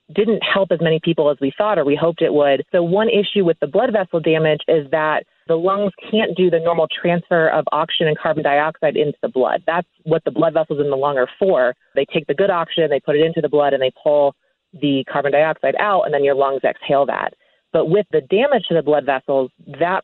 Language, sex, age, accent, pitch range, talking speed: English, female, 30-49, American, 150-180 Hz, 245 wpm